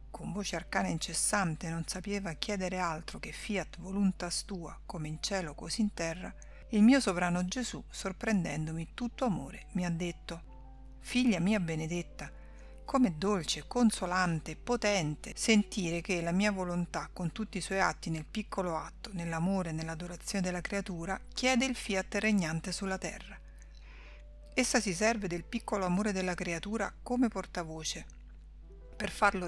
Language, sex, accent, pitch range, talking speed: Italian, female, native, 170-205 Hz, 145 wpm